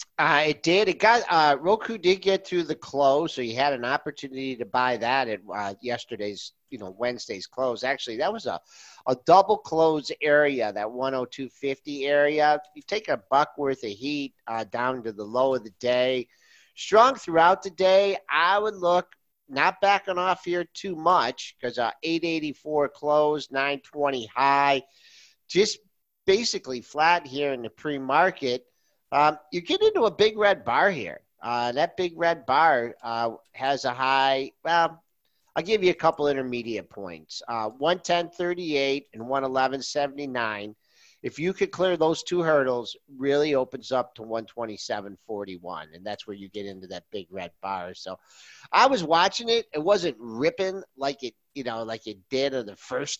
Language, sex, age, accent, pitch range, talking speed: English, male, 50-69, American, 125-170 Hz, 170 wpm